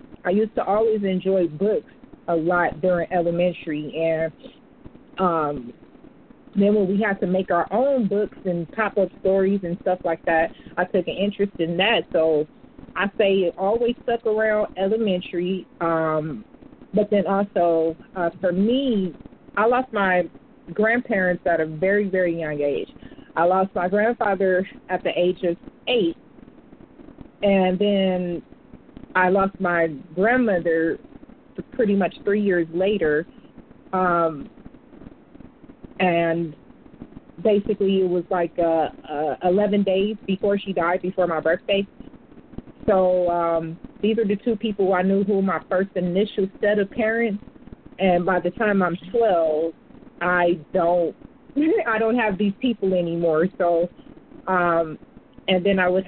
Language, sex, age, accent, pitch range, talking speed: English, female, 40-59, American, 175-220 Hz, 140 wpm